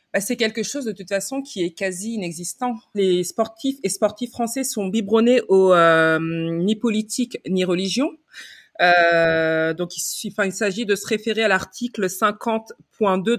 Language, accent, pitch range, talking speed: French, French, 190-245 Hz, 150 wpm